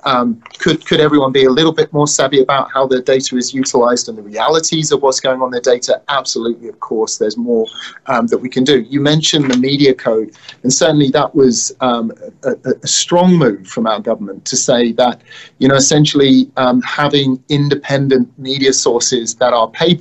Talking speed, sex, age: 200 wpm, male, 30-49